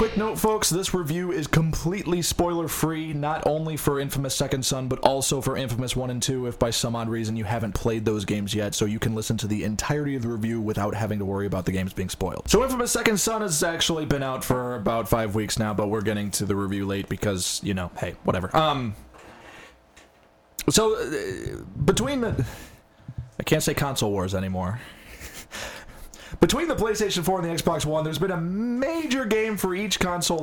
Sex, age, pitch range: male, 20-39, 115-165 Hz